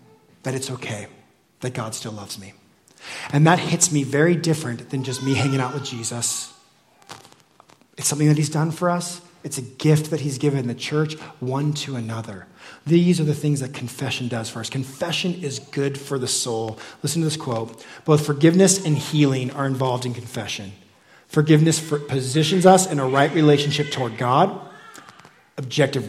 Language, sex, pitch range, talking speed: English, male, 120-155 Hz, 175 wpm